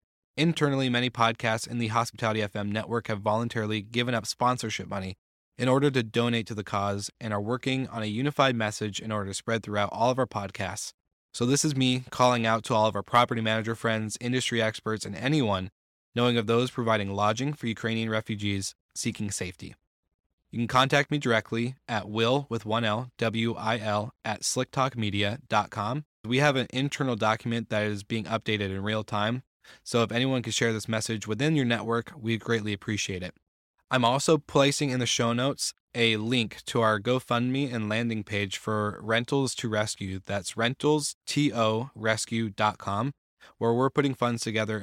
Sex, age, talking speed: male, 20-39, 175 wpm